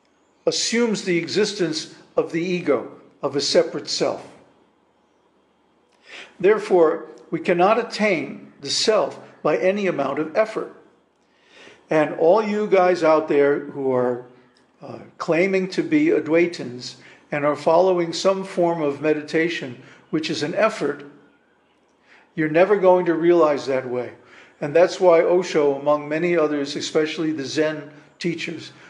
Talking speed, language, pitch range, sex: 130 wpm, English, 145-185 Hz, male